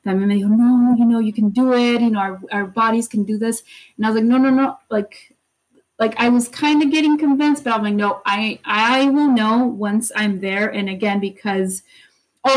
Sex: female